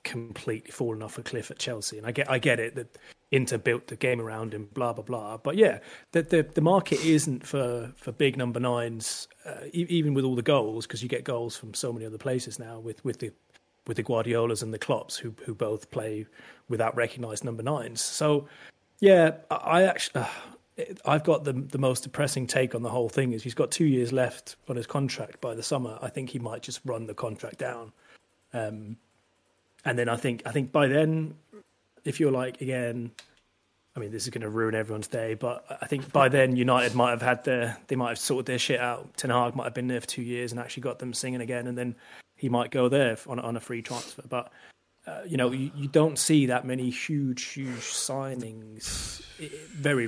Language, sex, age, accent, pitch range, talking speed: English, male, 30-49, British, 115-135 Hz, 225 wpm